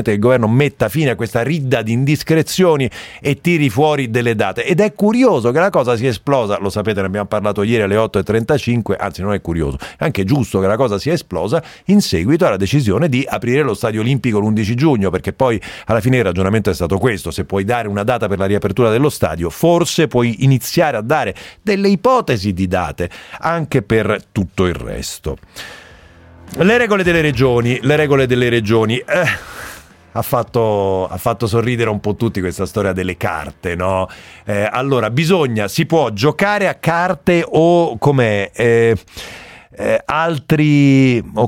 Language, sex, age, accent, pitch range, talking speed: Italian, male, 40-59, native, 105-150 Hz, 180 wpm